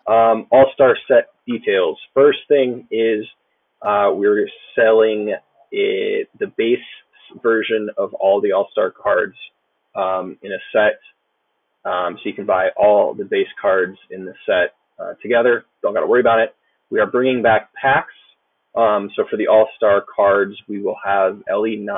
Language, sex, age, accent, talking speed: English, male, 20-39, American, 155 wpm